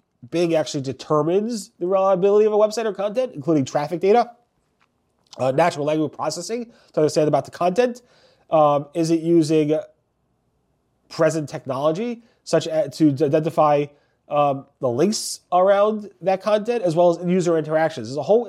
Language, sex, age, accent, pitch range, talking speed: English, male, 30-49, American, 145-180 Hz, 155 wpm